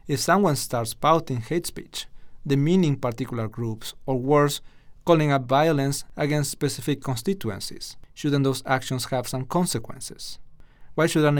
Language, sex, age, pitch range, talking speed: English, male, 40-59, 125-155 Hz, 135 wpm